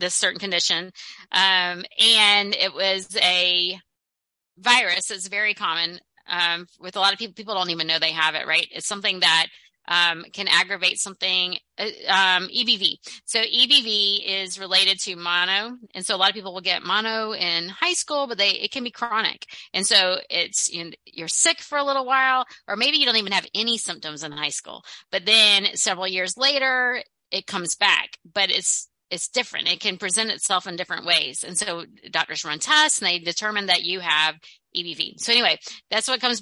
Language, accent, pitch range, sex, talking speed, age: English, American, 175-210 Hz, female, 190 wpm, 30-49